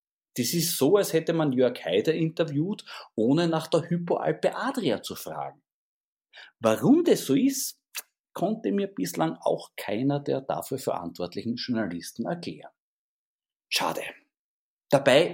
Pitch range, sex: 120-185 Hz, male